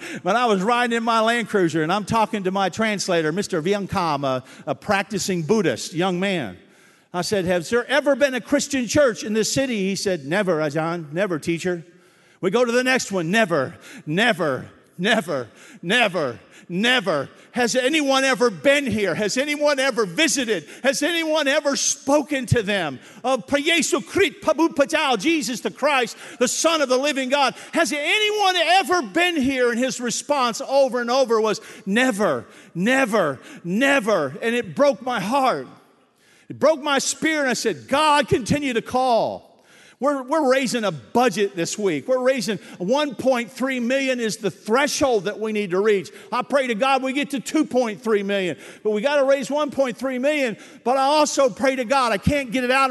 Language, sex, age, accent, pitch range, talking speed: English, male, 50-69, American, 210-280 Hz, 175 wpm